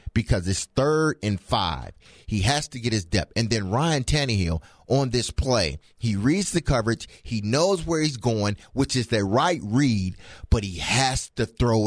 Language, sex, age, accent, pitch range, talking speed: English, male, 30-49, American, 90-125 Hz, 185 wpm